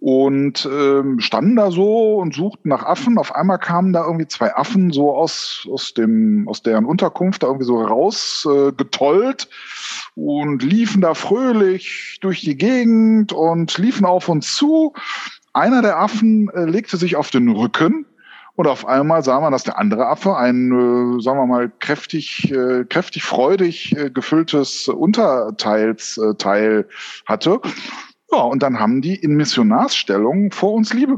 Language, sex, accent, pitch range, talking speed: German, male, German, 135-210 Hz, 165 wpm